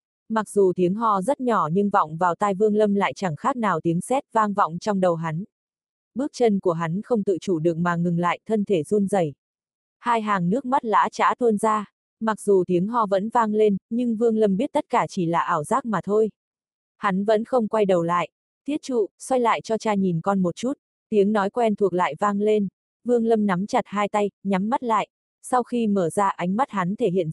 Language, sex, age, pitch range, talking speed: Vietnamese, female, 20-39, 185-230 Hz, 235 wpm